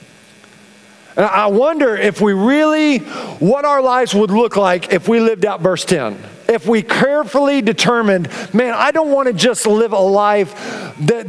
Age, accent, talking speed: 50-69, American, 165 wpm